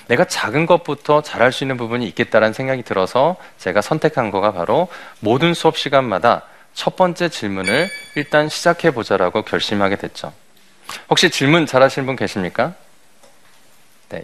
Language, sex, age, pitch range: Korean, male, 20-39, 115-160 Hz